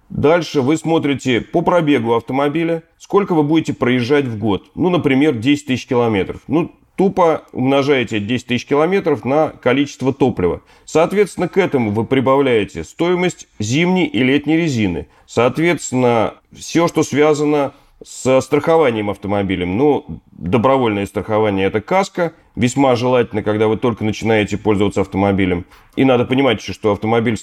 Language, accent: Russian, native